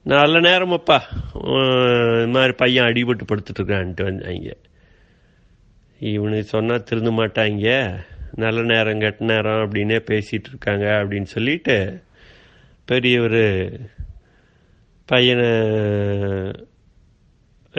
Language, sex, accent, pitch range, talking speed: Tamil, male, native, 105-130 Hz, 80 wpm